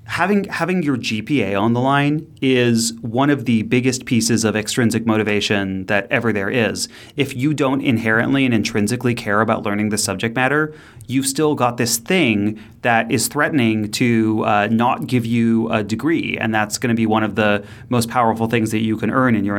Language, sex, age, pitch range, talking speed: English, male, 30-49, 110-135 Hz, 195 wpm